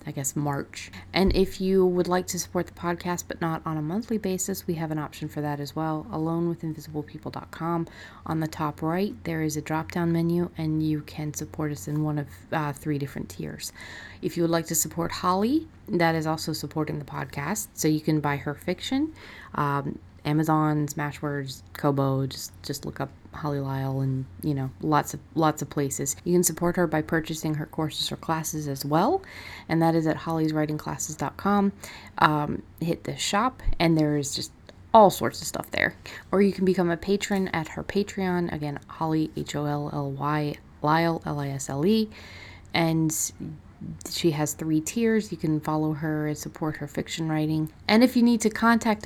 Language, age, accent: English, 30-49, American